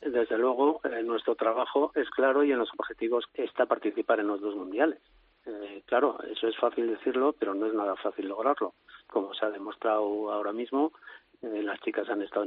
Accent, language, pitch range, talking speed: Spanish, Spanish, 105-135 Hz, 195 wpm